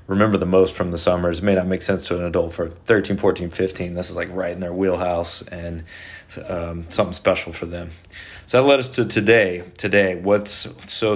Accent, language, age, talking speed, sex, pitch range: American, English, 30-49, 215 wpm, male, 95-105 Hz